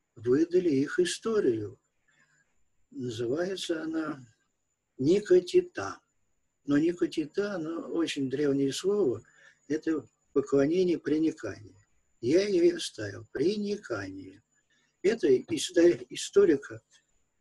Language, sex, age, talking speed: Russian, male, 50-69, 70 wpm